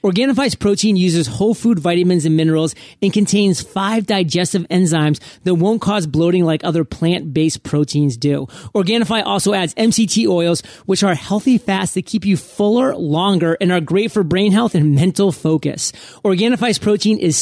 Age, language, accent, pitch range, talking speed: 30-49, English, American, 165-205 Hz, 165 wpm